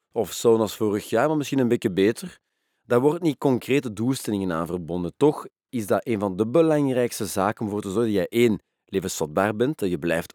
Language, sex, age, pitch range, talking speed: Dutch, male, 40-59, 90-115 Hz, 215 wpm